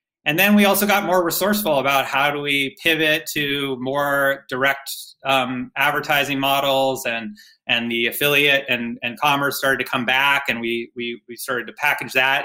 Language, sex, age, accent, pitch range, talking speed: English, male, 30-49, American, 125-145 Hz, 180 wpm